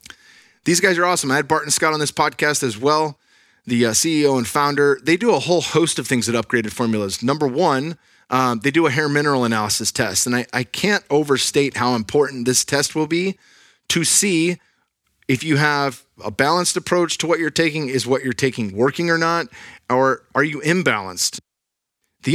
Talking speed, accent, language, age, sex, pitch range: 195 wpm, American, English, 30-49, male, 120-155 Hz